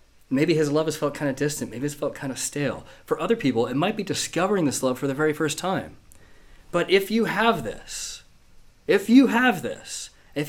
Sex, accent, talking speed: male, American, 215 wpm